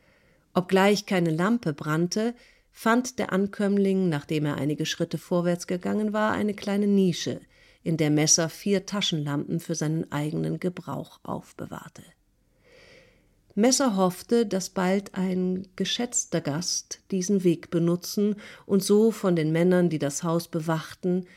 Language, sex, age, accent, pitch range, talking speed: German, female, 50-69, German, 160-200 Hz, 130 wpm